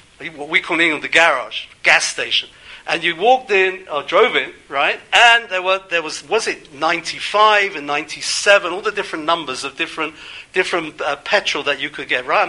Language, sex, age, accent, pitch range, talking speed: English, male, 50-69, British, 155-210 Hz, 195 wpm